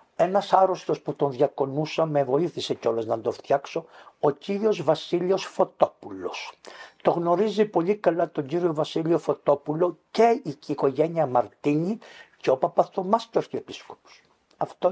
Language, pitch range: Greek, 150-195 Hz